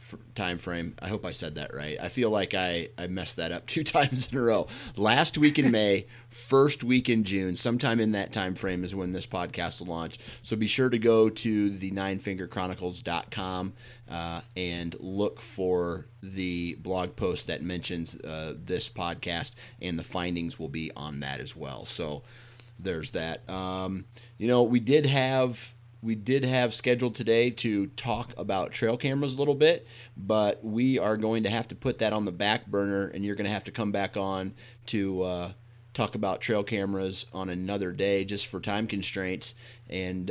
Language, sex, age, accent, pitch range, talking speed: English, male, 30-49, American, 95-120 Hz, 190 wpm